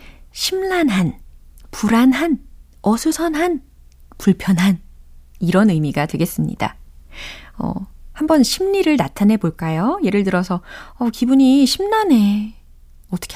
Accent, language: native, Korean